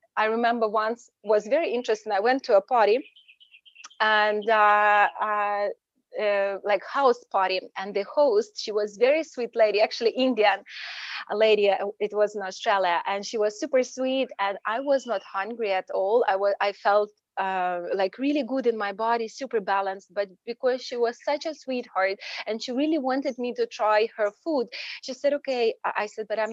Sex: female